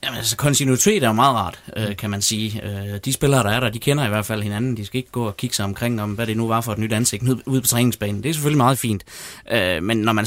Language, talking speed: Danish, 310 wpm